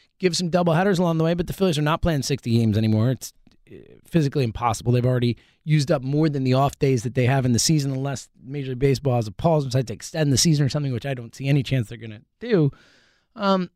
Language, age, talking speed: English, 20-39, 250 wpm